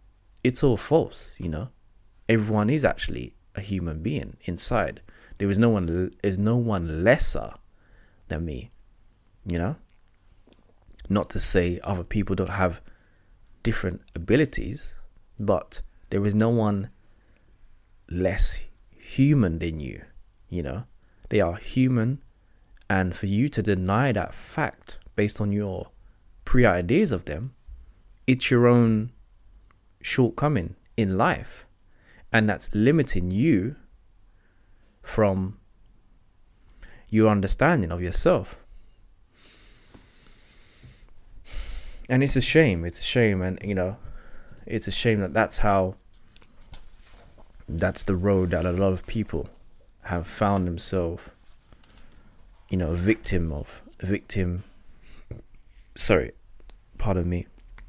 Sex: male